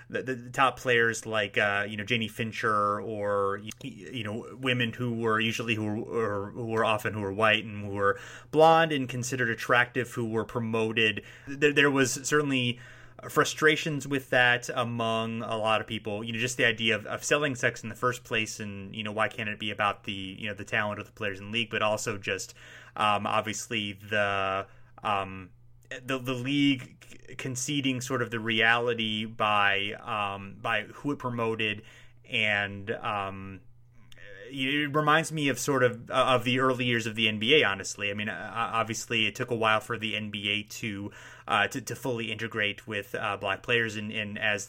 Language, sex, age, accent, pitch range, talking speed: English, male, 30-49, American, 105-125 Hz, 190 wpm